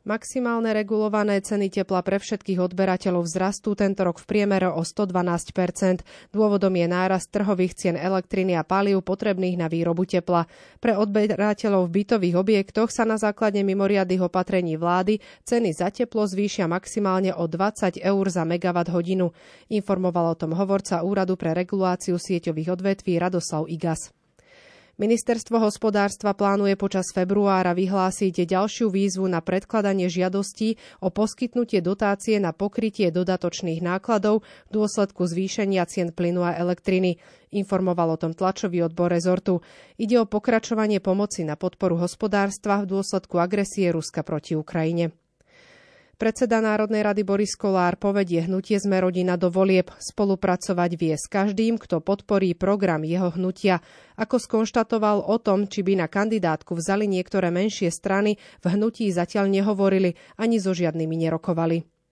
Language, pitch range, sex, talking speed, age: Slovak, 180-210 Hz, female, 140 wpm, 30-49